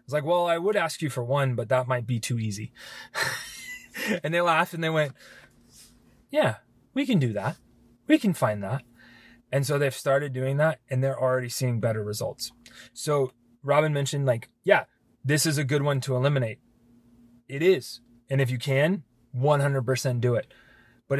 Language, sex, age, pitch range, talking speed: English, male, 20-39, 120-135 Hz, 180 wpm